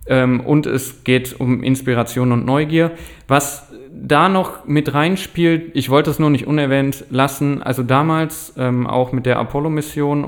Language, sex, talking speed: German, male, 160 wpm